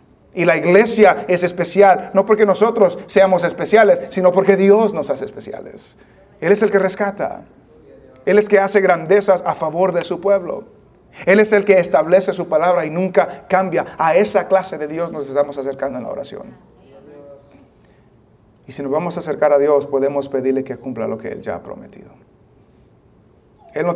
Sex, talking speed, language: male, 185 wpm, English